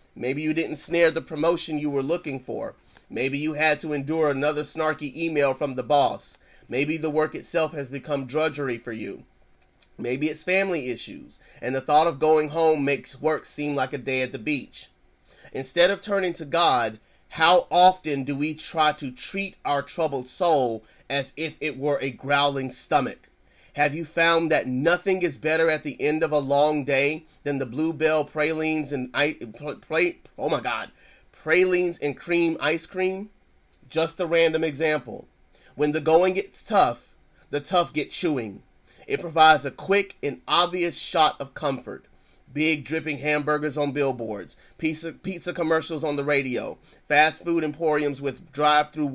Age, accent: 30-49, American